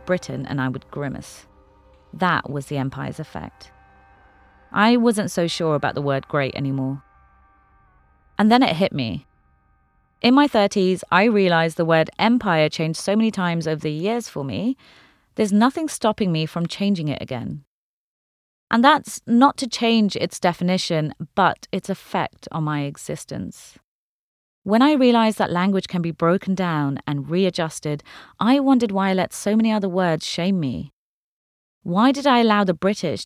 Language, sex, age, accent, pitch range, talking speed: English, female, 30-49, British, 150-215 Hz, 160 wpm